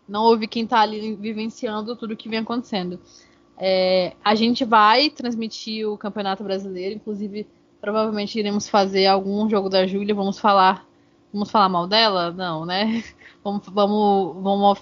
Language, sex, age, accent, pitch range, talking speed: Portuguese, female, 20-39, Brazilian, 195-225 Hz, 155 wpm